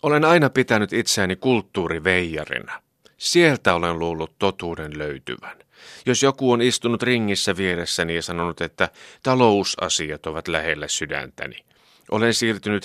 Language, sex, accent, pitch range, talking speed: Finnish, male, native, 85-125 Hz, 115 wpm